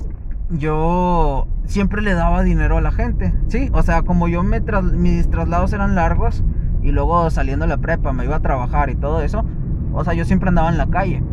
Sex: male